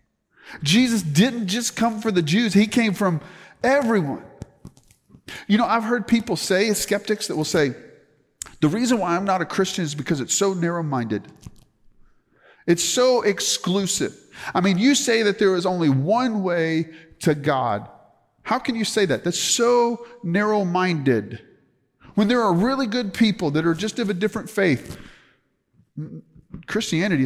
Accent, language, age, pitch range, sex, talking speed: American, English, 40-59, 130-205 Hz, male, 155 wpm